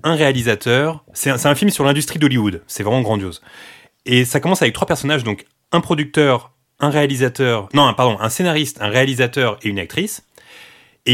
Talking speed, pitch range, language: 185 wpm, 105-155 Hz, French